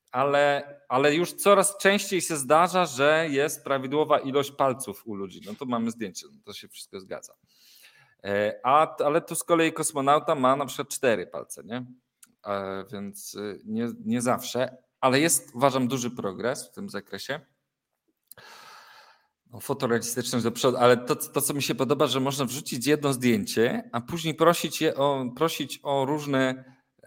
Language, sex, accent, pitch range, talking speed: Polish, male, native, 125-155 Hz, 160 wpm